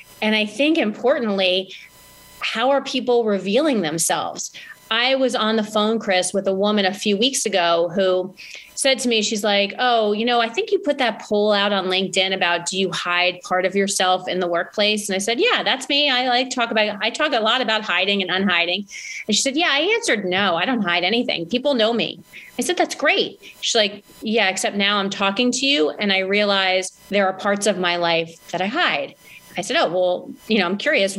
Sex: female